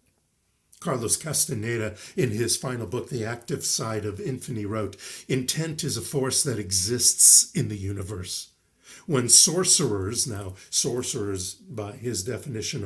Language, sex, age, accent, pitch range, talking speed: English, male, 50-69, American, 105-145 Hz, 130 wpm